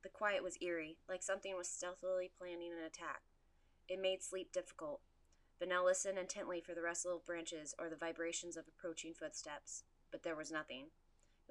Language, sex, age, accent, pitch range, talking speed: English, female, 20-39, American, 160-185 Hz, 175 wpm